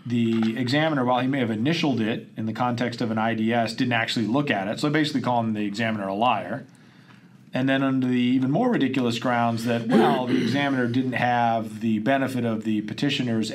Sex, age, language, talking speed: male, 40-59, English, 200 wpm